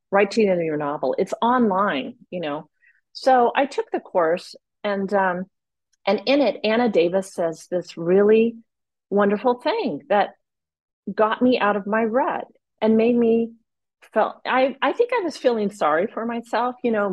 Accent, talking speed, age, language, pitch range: American, 170 wpm, 40-59, English, 190-245 Hz